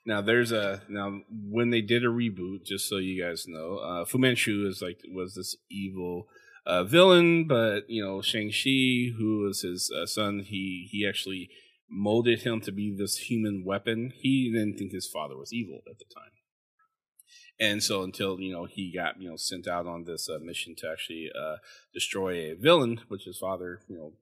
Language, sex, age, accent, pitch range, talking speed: English, male, 30-49, American, 95-120 Hz, 200 wpm